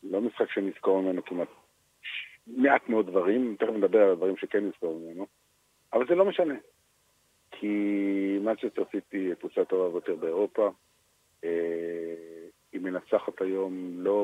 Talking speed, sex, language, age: 135 wpm, male, Hebrew, 50-69